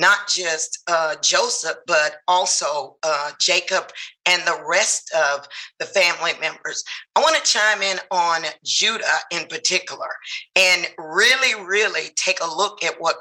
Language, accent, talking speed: English, American, 145 wpm